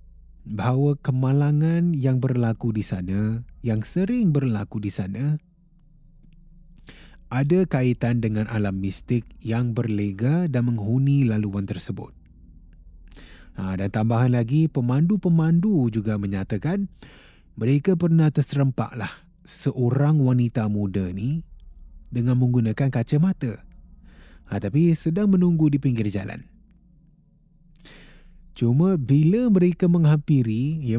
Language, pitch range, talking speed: Malay, 110-160 Hz, 100 wpm